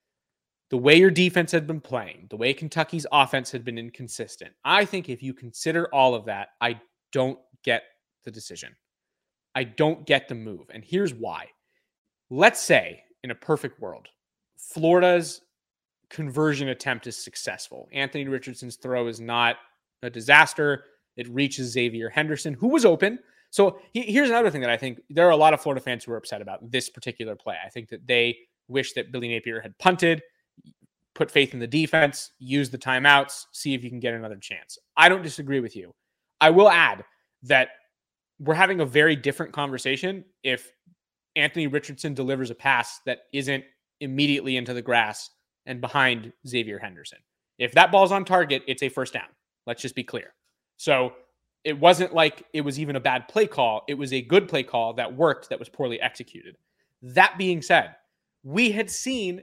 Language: English